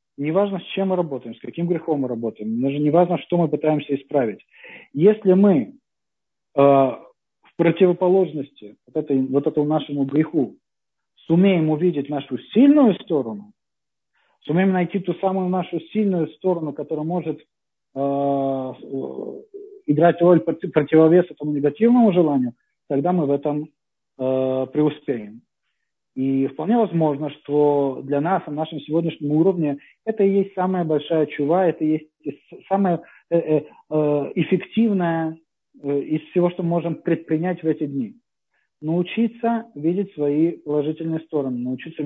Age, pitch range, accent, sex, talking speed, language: 40-59, 145-180 Hz, native, male, 130 wpm, Russian